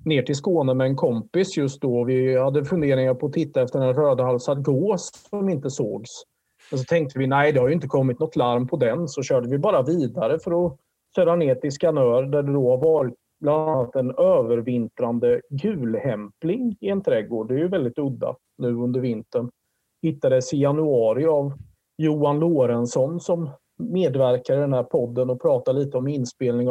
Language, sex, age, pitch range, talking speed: Swedish, male, 30-49, 125-165 Hz, 190 wpm